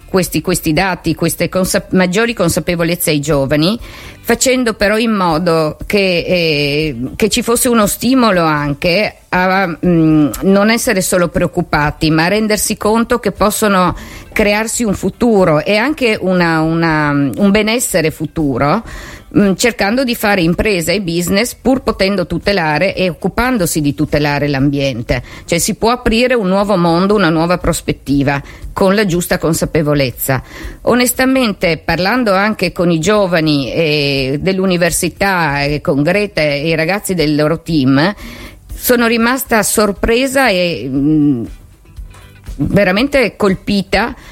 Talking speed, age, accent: 130 wpm, 50-69, native